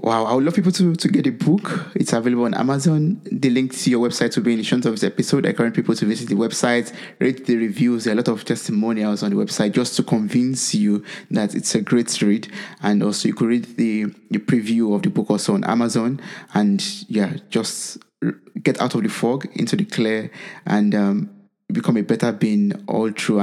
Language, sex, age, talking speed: English, male, 20-39, 225 wpm